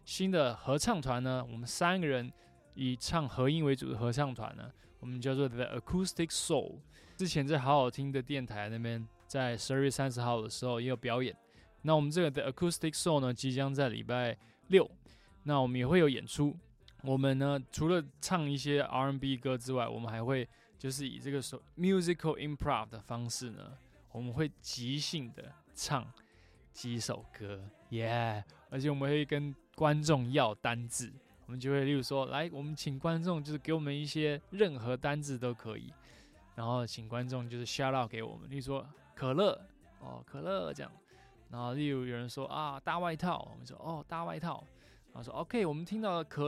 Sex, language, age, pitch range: male, Chinese, 20-39, 120-150 Hz